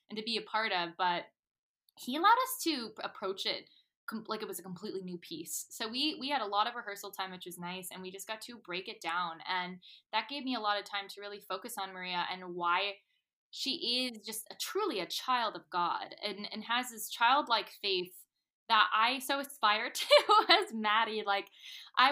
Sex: female